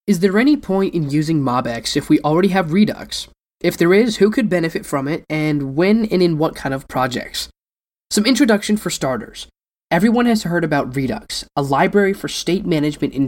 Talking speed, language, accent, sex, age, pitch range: 195 wpm, English, American, male, 10-29, 140-190 Hz